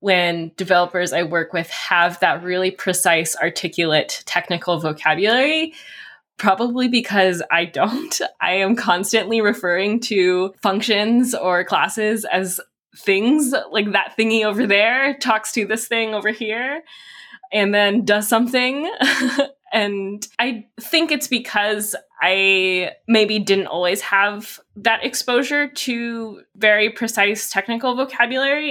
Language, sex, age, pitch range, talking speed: English, female, 10-29, 180-235 Hz, 120 wpm